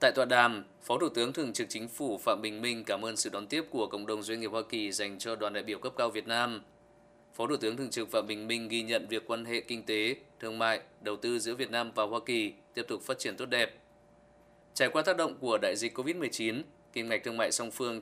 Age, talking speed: 20-39, 265 wpm